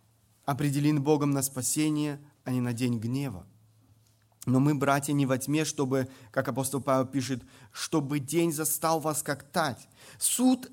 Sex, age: male, 30-49